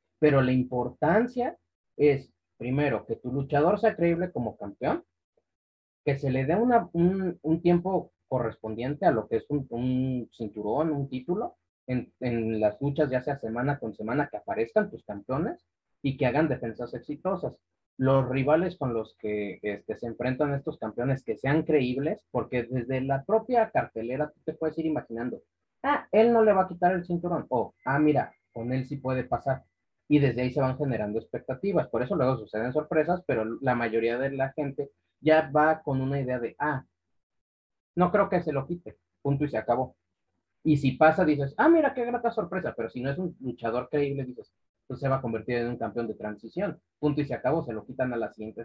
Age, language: 30-49, Spanish